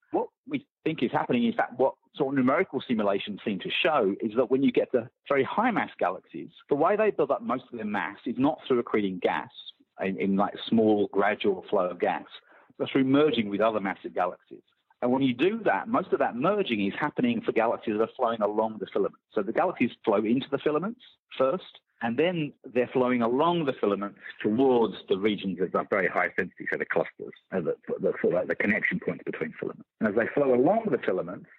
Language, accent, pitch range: English, British, 100-135 Hz